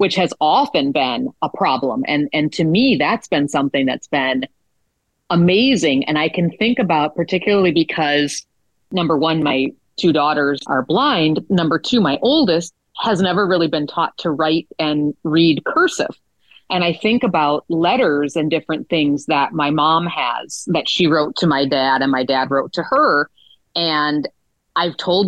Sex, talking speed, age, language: female, 170 wpm, 40-59, English